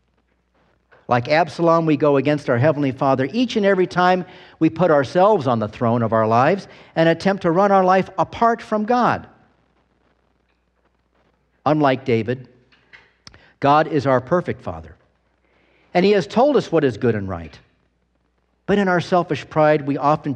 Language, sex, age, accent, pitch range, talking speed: English, male, 50-69, American, 110-155 Hz, 160 wpm